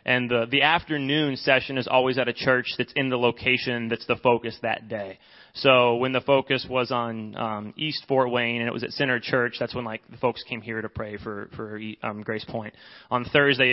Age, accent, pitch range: 30-49, American, 120-140 Hz